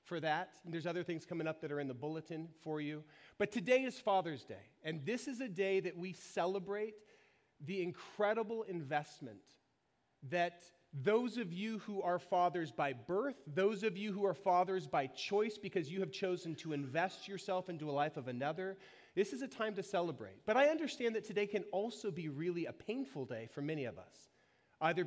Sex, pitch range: male, 145-195 Hz